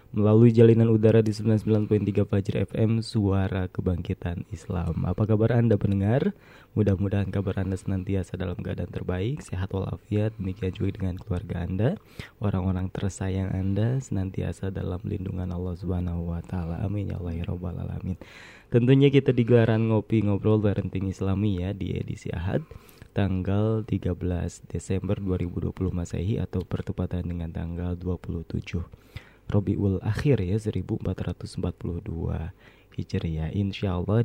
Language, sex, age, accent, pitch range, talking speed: Indonesian, male, 20-39, native, 90-110 Hz, 125 wpm